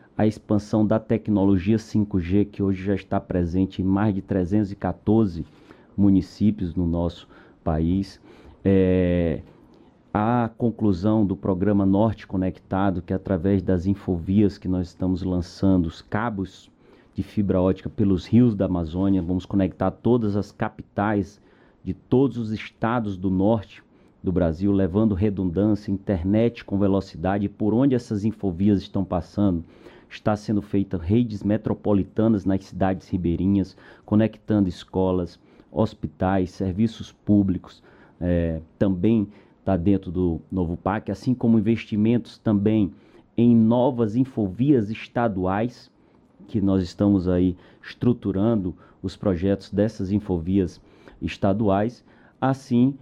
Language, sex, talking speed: Portuguese, male, 115 wpm